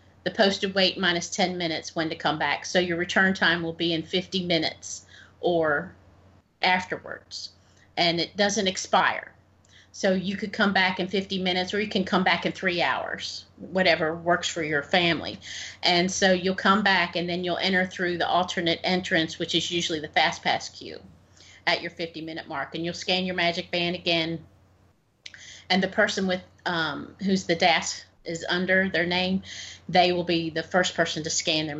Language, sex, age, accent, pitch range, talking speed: English, female, 40-59, American, 155-185 Hz, 185 wpm